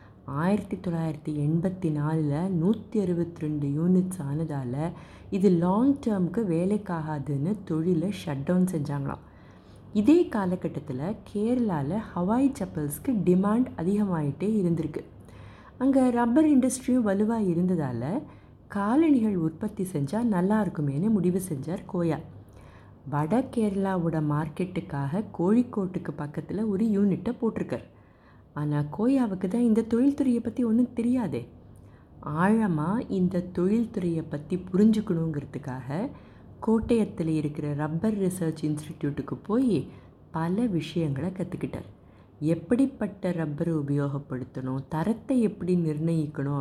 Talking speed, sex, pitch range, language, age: 90 wpm, female, 150-210 Hz, Tamil, 30-49